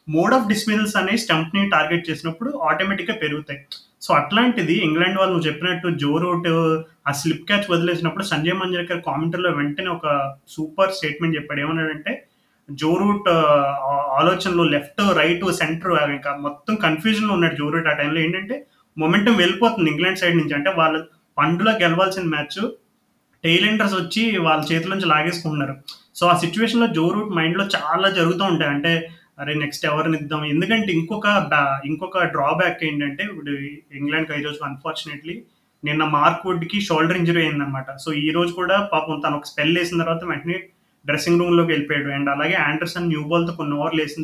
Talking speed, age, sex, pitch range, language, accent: 155 wpm, 30-49, male, 150-180 Hz, Telugu, native